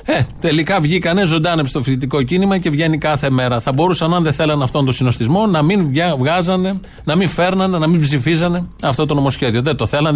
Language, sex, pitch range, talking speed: Greek, male, 120-155 Hz, 195 wpm